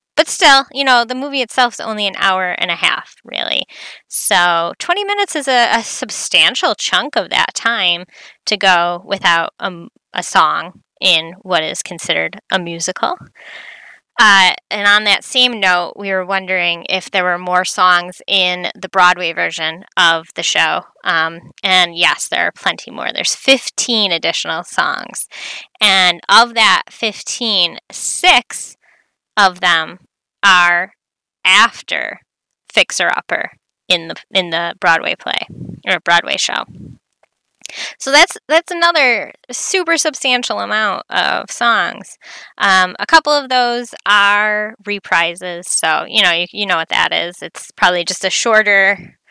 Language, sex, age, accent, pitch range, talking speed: English, female, 20-39, American, 180-240 Hz, 145 wpm